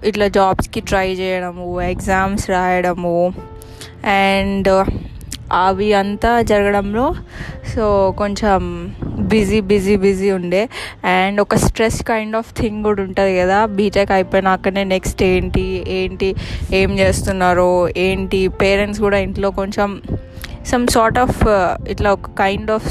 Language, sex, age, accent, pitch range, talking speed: Telugu, female, 20-39, native, 180-205 Hz, 120 wpm